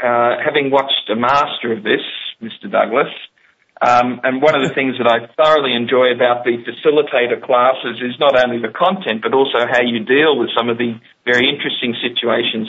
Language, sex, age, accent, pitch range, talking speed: English, male, 50-69, Australian, 125-185 Hz, 190 wpm